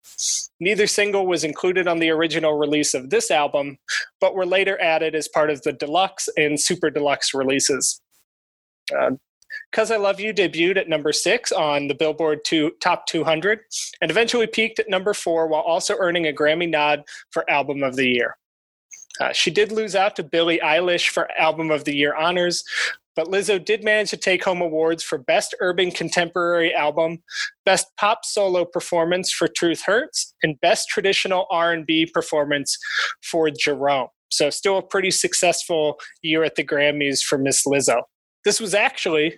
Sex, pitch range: male, 150-190 Hz